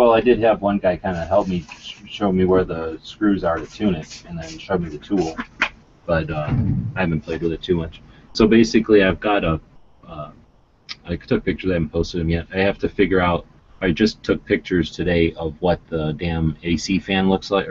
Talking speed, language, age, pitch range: 225 wpm, English, 30-49, 80-95 Hz